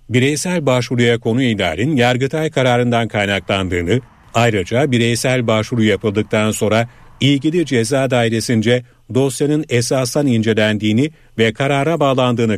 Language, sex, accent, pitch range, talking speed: Turkish, male, native, 110-135 Hz, 100 wpm